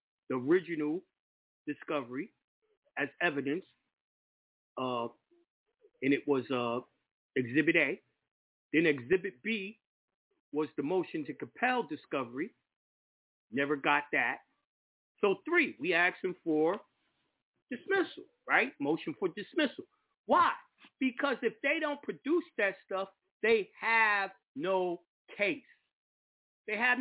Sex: male